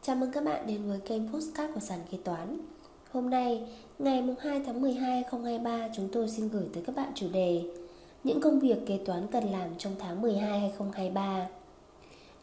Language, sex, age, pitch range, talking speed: Vietnamese, female, 20-39, 200-260 Hz, 180 wpm